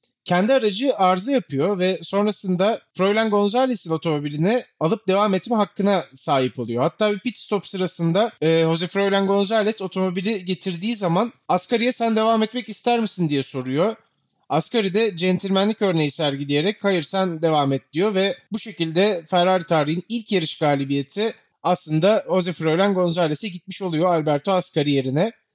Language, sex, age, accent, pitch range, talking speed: Turkish, male, 30-49, native, 150-200 Hz, 145 wpm